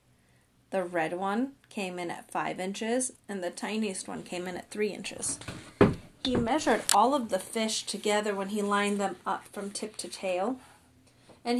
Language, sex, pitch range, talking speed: English, female, 165-245 Hz, 175 wpm